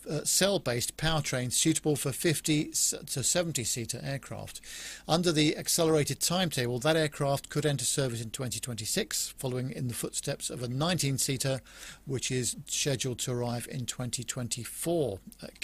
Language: English